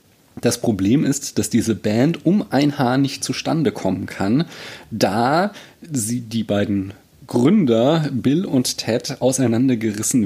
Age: 30-49